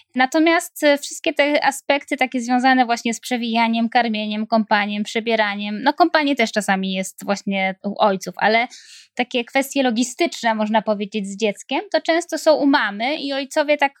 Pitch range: 215-285 Hz